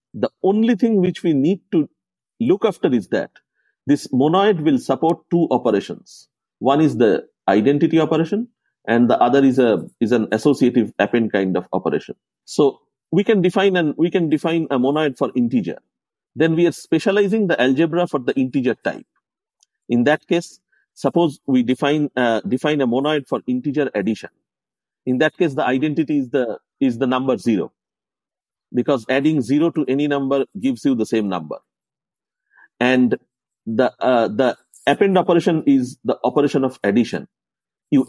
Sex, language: male, English